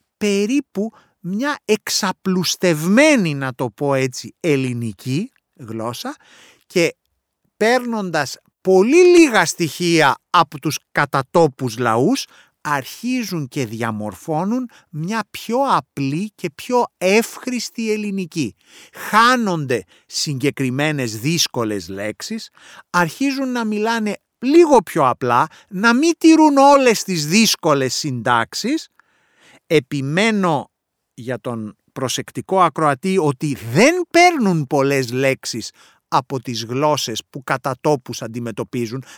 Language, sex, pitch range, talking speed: English, male, 135-215 Hz, 95 wpm